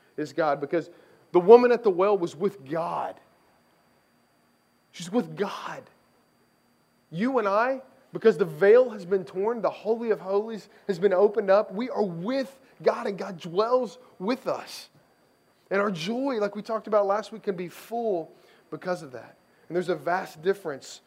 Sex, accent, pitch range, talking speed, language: male, American, 145-200 Hz, 170 wpm, English